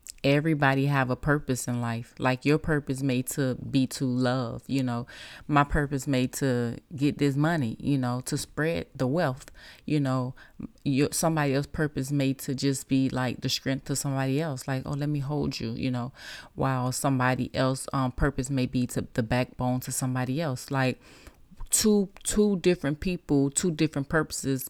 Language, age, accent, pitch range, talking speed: English, 30-49, American, 130-145 Hz, 180 wpm